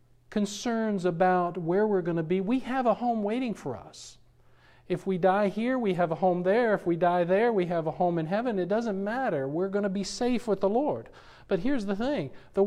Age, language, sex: 50-69, English, male